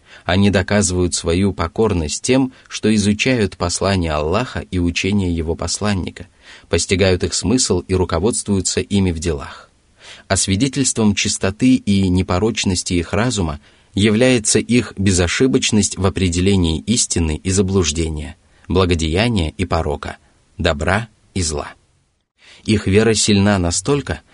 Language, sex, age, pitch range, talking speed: Russian, male, 30-49, 85-105 Hz, 115 wpm